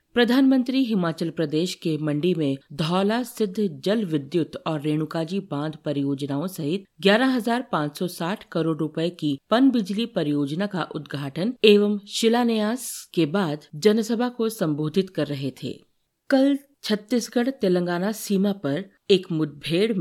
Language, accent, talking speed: Hindi, native, 125 wpm